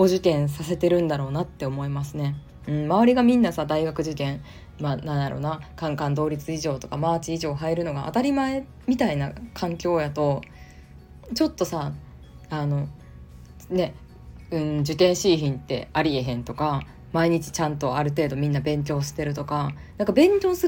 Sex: female